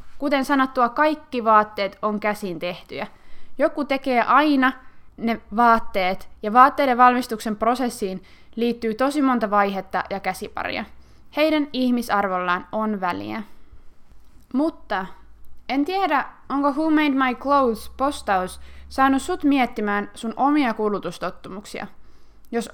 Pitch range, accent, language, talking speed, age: 205-285 Hz, native, Finnish, 110 wpm, 20-39